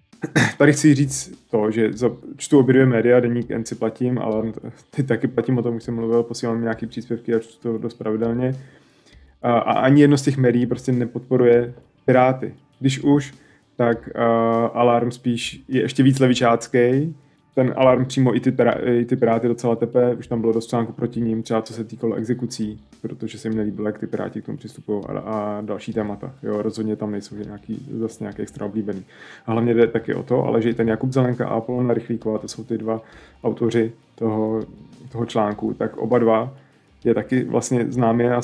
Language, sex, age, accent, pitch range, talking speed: Czech, male, 20-39, native, 110-125 Hz, 195 wpm